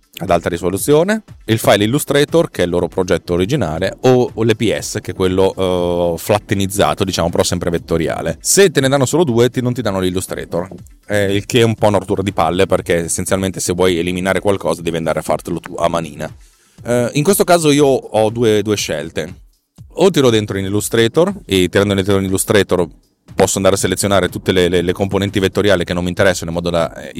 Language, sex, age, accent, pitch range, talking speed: Italian, male, 30-49, native, 95-125 Hz, 205 wpm